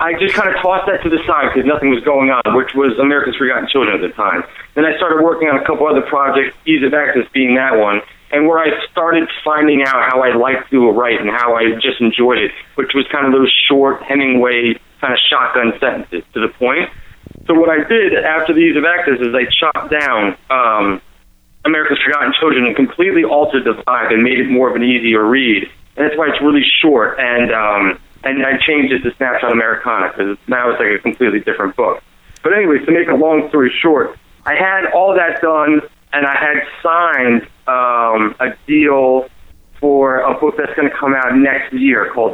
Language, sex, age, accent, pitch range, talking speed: English, male, 40-59, American, 130-160 Hz, 215 wpm